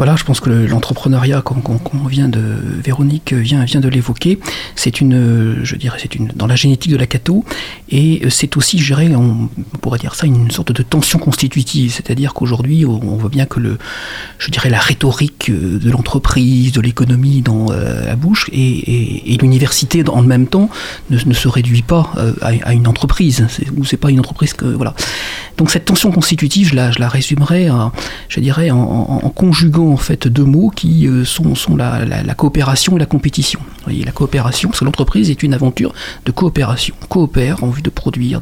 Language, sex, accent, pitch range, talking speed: French, male, French, 125-155 Hz, 195 wpm